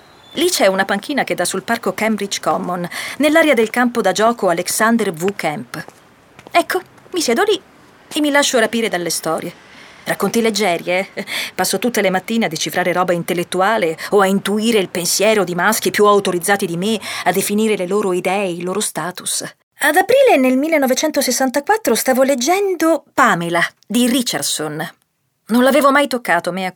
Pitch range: 190-280 Hz